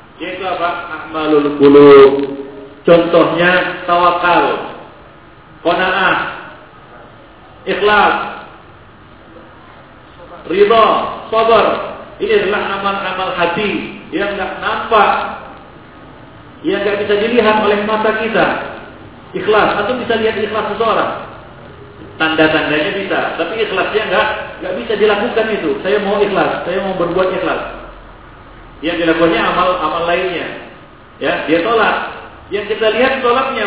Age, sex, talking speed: 50-69, male, 100 wpm